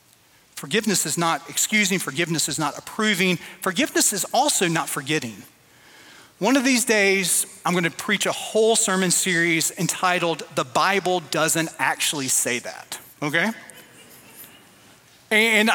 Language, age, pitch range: English, 30-49, 175-225 Hz